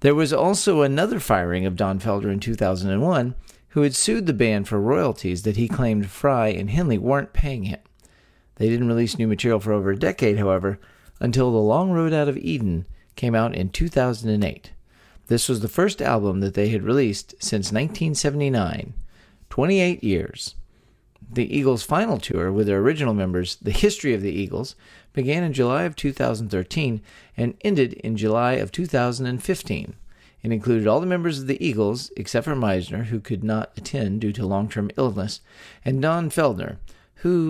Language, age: English, 40-59